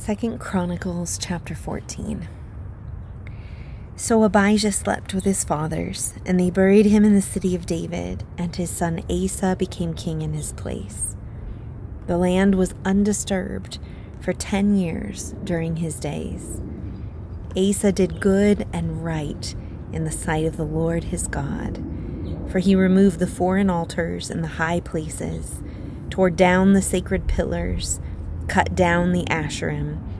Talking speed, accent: 140 wpm, American